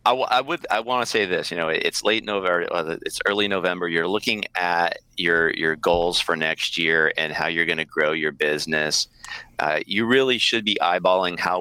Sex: male